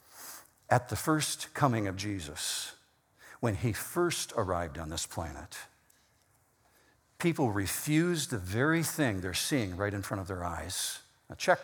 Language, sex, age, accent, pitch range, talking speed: English, male, 50-69, American, 120-185 Hz, 145 wpm